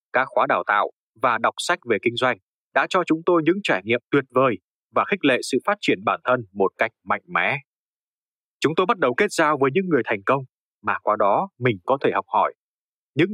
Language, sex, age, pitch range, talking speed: Vietnamese, male, 20-39, 120-160 Hz, 230 wpm